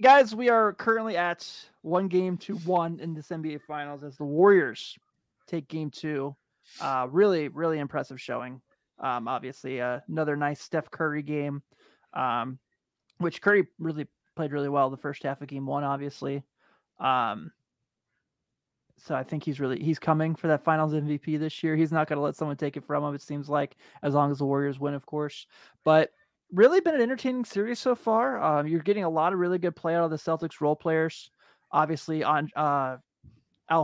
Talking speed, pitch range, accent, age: 190 wpm, 145-170 Hz, American, 20-39